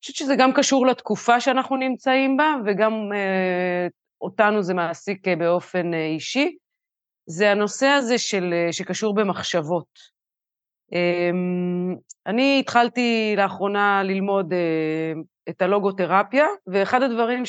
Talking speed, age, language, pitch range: 110 wpm, 30-49, Hebrew, 180-240 Hz